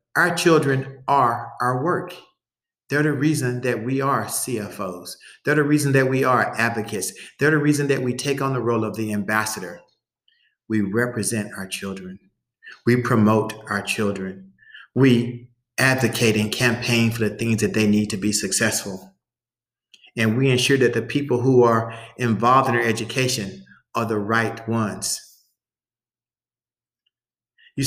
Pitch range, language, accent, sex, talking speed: 110-135 Hz, English, American, male, 150 wpm